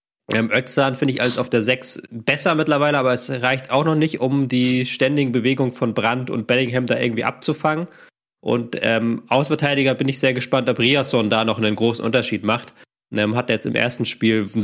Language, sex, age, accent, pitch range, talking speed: German, male, 20-39, German, 115-140 Hz, 205 wpm